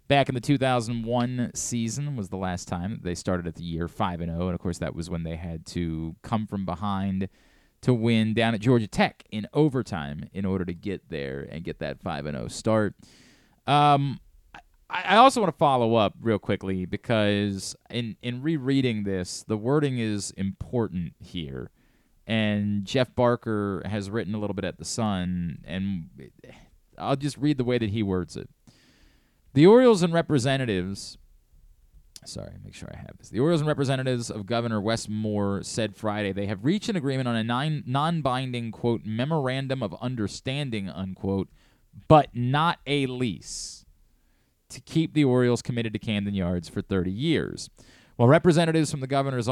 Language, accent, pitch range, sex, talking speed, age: English, American, 95-130 Hz, male, 170 wpm, 20-39